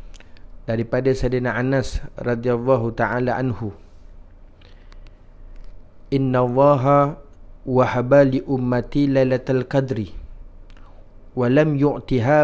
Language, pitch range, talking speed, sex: Malay, 90-145 Hz, 70 wpm, male